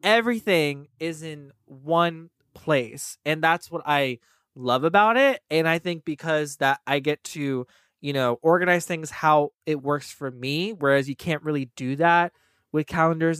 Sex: male